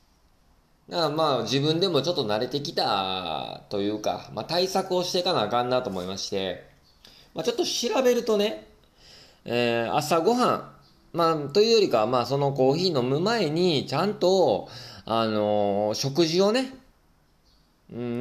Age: 20-39